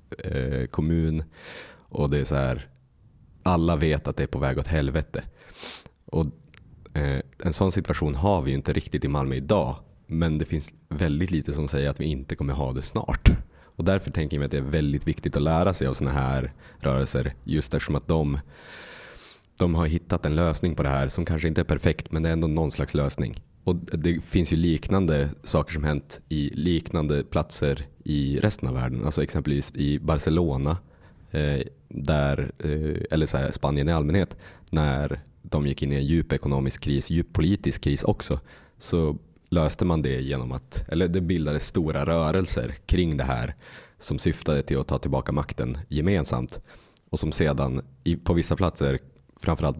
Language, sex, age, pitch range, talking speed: Swedish, male, 30-49, 70-85 Hz, 180 wpm